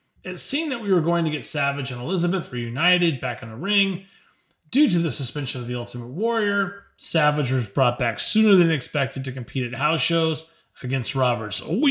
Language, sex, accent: English, male, American